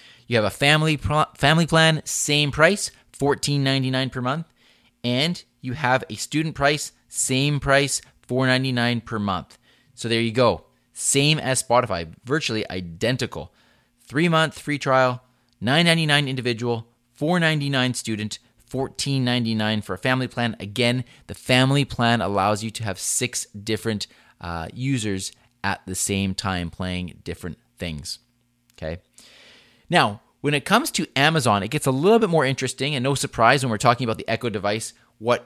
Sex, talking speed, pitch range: male, 150 wpm, 105-135 Hz